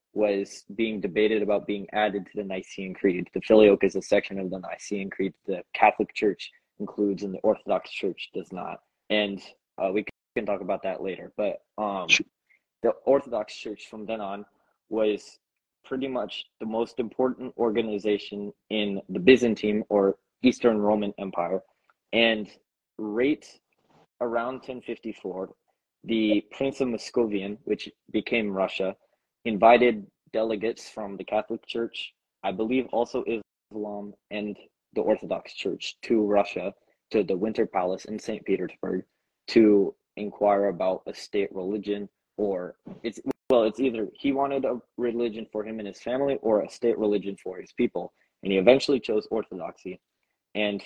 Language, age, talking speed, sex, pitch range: English, 20-39, 150 wpm, male, 100-115 Hz